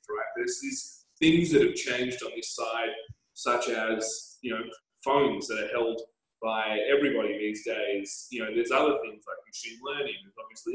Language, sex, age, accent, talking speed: English, male, 20-39, Australian, 180 wpm